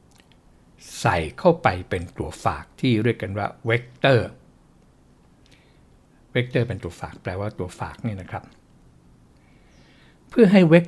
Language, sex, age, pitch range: Thai, male, 60-79, 90-125 Hz